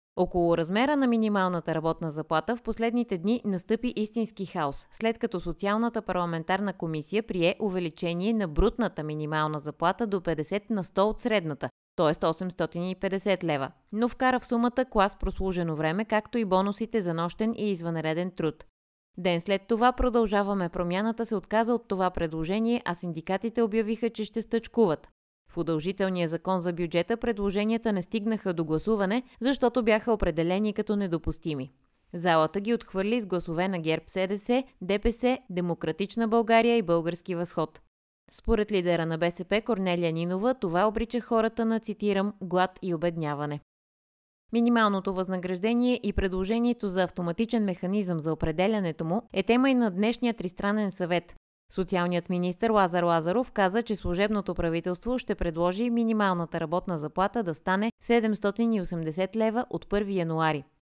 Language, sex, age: Bulgarian, female, 30-49